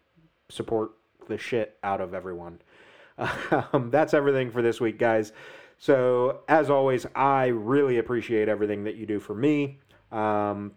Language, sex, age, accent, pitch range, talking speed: English, male, 30-49, American, 105-135 Hz, 145 wpm